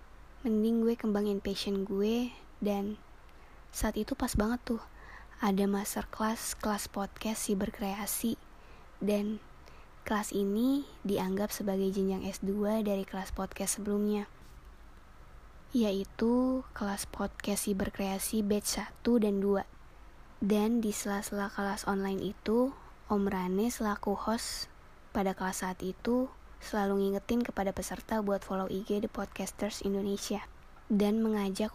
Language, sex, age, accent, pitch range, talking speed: Indonesian, female, 20-39, native, 200-220 Hz, 120 wpm